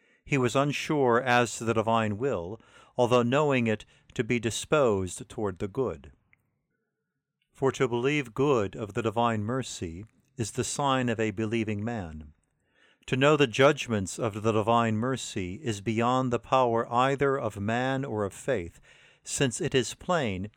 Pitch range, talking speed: 105-135 Hz, 160 wpm